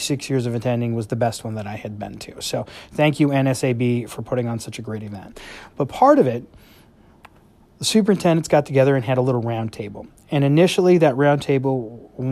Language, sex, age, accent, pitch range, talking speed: English, male, 30-49, American, 115-140 Hz, 210 wpm